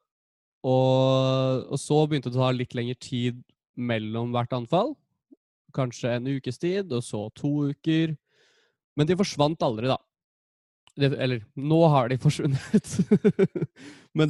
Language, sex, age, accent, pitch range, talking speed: Danish, male, 20-39, Swedish, 120-145 Hz, 125 wpm